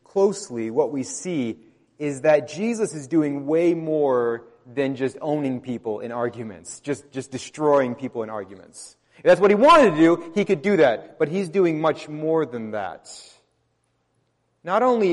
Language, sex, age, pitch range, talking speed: English, male, 30-49, 120-165 Hz, 170 wpm